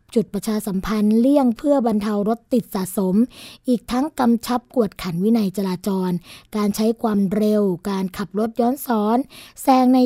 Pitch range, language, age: 200-240 Hz, Thai, 20-39